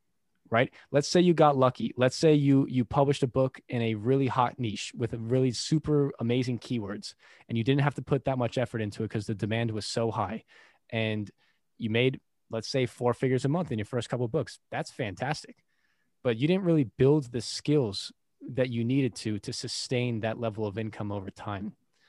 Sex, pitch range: male, 110-130 Hz